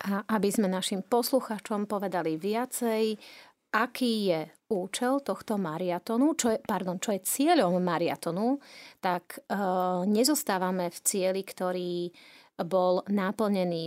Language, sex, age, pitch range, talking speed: Slovak, female, 30-49, 180-235 Hz, 115 wpm